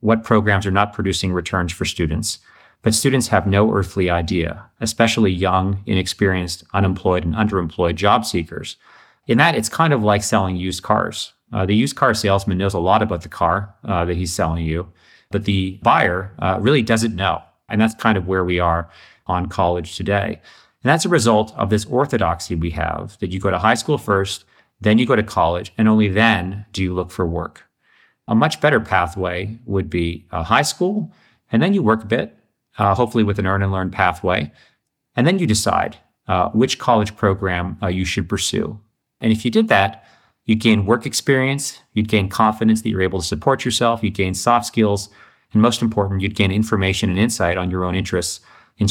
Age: 40-59